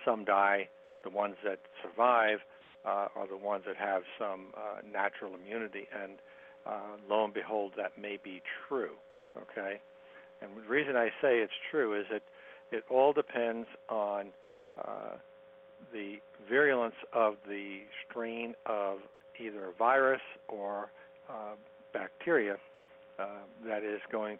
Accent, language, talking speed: American, English, 135 wpm